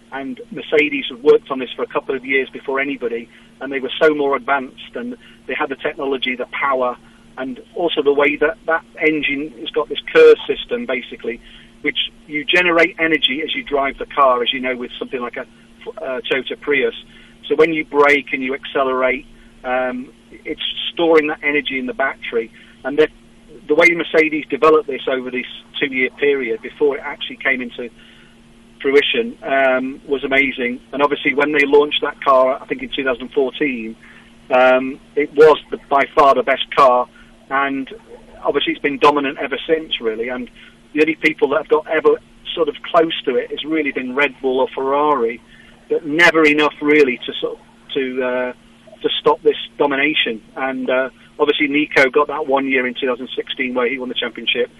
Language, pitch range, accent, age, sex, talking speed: English, 130-165 Hz, British, 40-59, male, 185 wpm